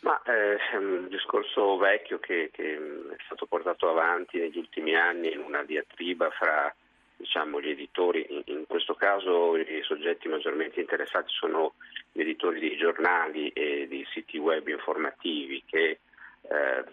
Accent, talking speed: native, 150 wpm